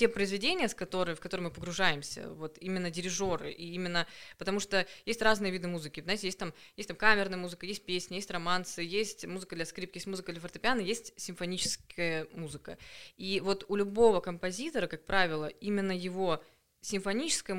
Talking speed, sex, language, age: 175 wpm, female, Russian, 20-39